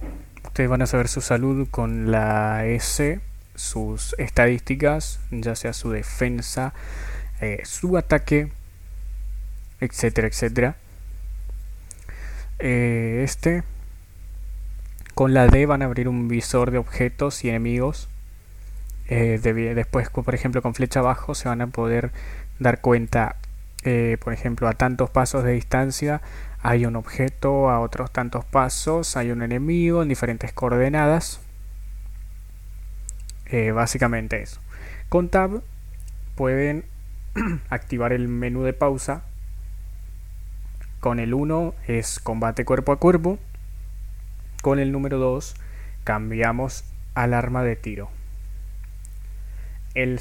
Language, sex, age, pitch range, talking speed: Spanish, male, 20-39, 90-130 Hz, 115 wpm